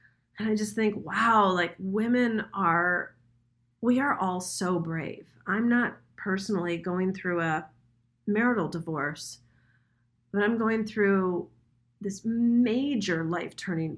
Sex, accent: female, American